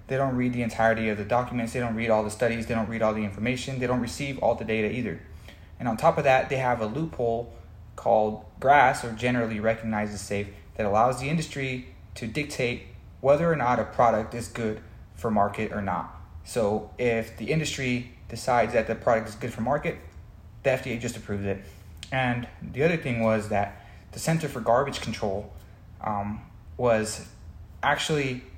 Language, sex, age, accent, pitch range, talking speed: English, male, 20-39, American, 105-125 Hz, 190 wpm